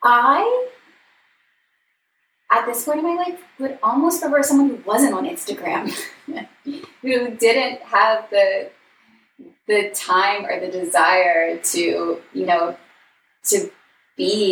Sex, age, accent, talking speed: female, 10-29, American, 120 wpm